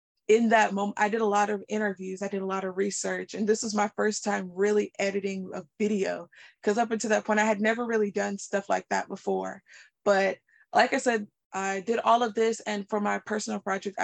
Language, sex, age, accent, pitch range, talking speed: English, female, 20-39, American, 190-215 Hz, 225 wpm